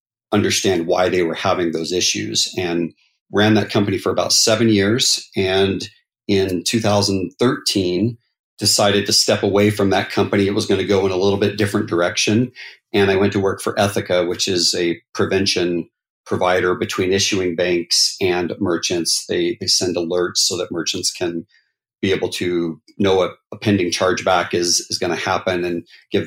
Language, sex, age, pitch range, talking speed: English, male, 40-59, 90-100 Hz, 175 wpm